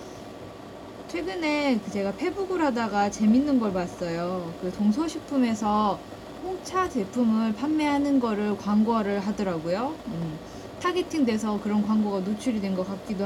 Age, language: 20-39, Korean